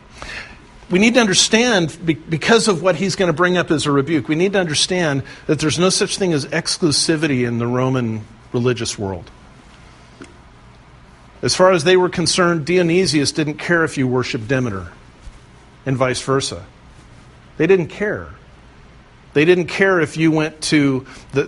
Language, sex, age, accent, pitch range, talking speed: English, male, 50-69, American, 125-175 Hz, 160 wpm